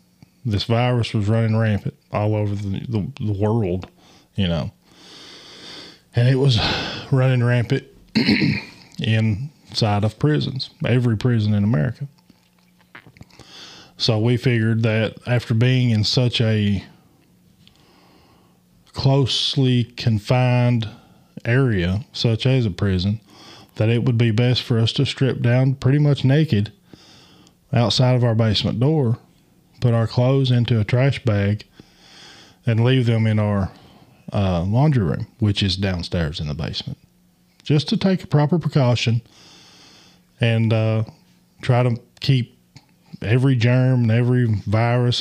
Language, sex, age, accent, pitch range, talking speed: English, male, 20-39, American, 105-125 Hz, 125 wpm